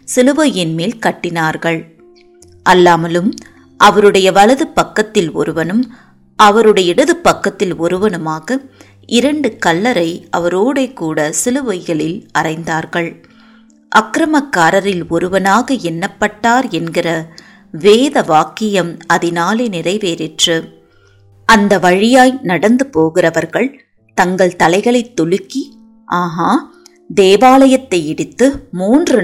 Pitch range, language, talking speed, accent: 170-245 Hz, Tamil, 75 wpm, native